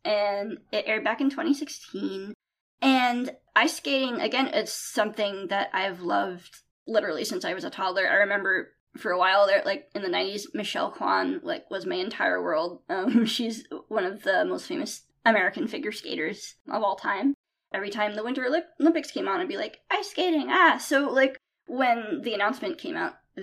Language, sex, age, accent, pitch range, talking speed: English, female, 20-39, American, 205-310 Hz, 185 wpm